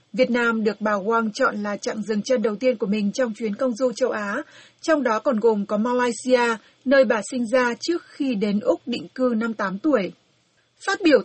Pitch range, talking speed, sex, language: 220-270 Hz, 220 wpm, female, Vietnamese